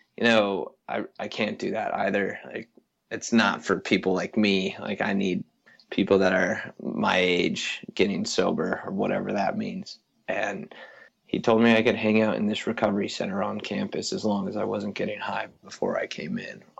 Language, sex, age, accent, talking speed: English, male, 20-39, American, 195 wpm